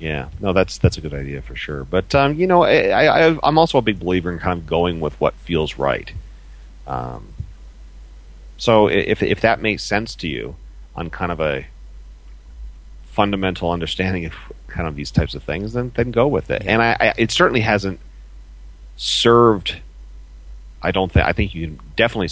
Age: 40-59